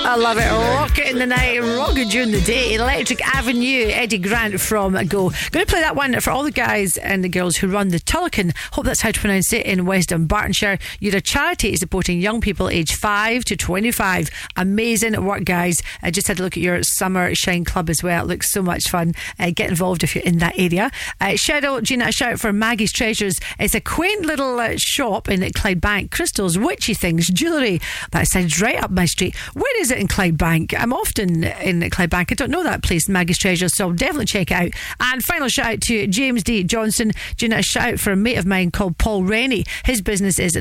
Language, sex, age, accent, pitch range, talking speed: English, female, 40-59, British, 180-235 Hz, 220 wpm